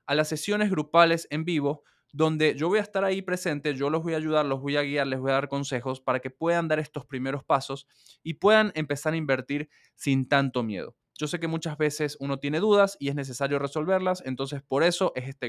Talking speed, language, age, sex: 230 wpm, Spanish, 20-39, male